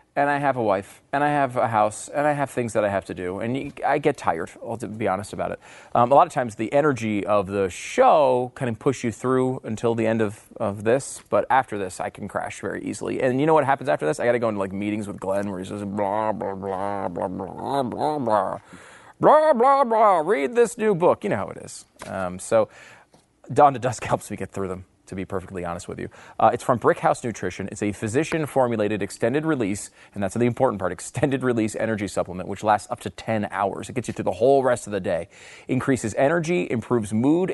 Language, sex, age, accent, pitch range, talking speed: English, male, 30-49, American, 105-140 Hz, 250 wpm